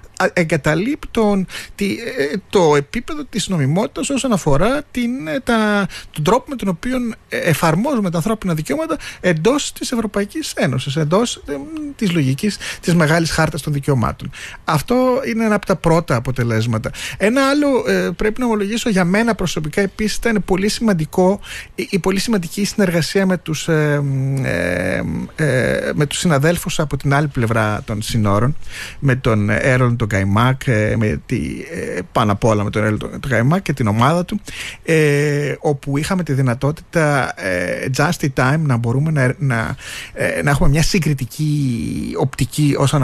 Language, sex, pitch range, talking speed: Greek, male, 130-195 Hz, 150 wpm